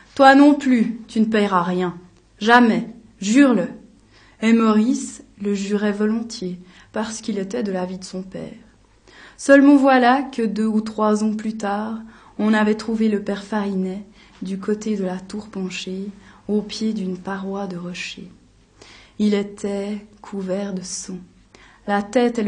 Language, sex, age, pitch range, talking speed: French, female, 20-39, 190-225 Hz, 155 wpm